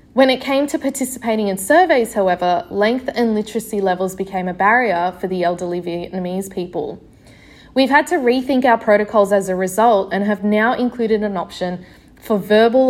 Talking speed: 170 wpm